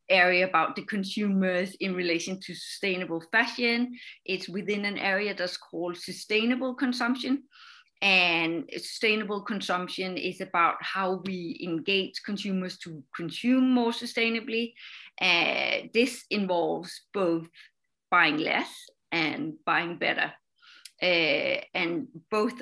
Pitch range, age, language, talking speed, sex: 180-240 Hz, 30-49, English, 110 wpm, female